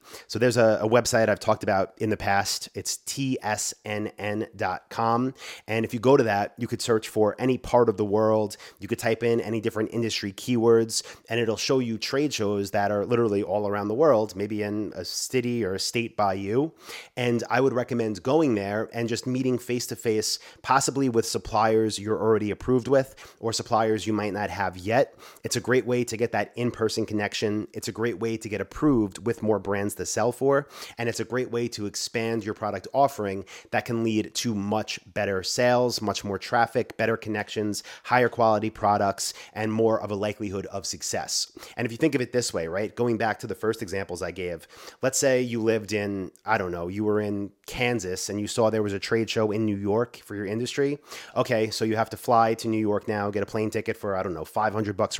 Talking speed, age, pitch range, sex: 220 wpm, 30-49, 105-120 Hz, male